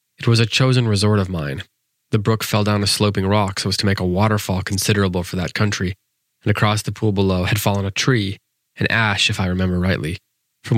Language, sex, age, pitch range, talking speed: English, male, 20-39, 90-110 Hz, 225 wpm